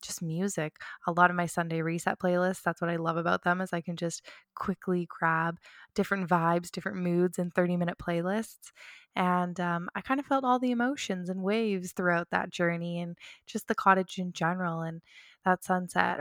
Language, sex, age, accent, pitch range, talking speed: English, female, 20-39, American, 170-195 Hz, 190 wpm